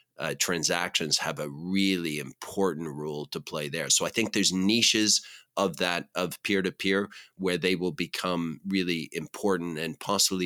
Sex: male